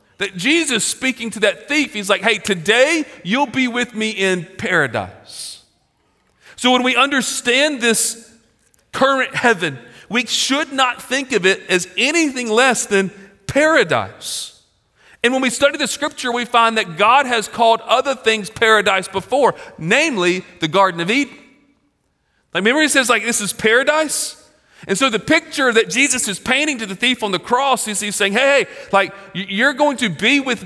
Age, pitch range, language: 40-59, 185-250 Hz, English